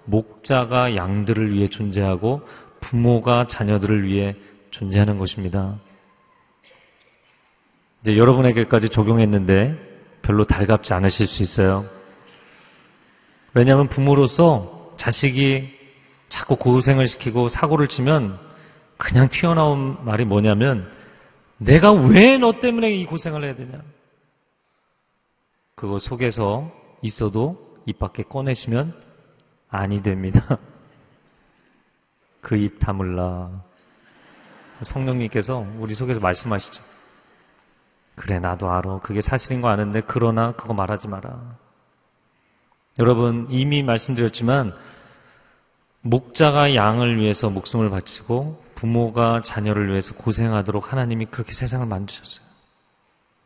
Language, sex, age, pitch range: Korean, male, 40-59, 100-130 Hz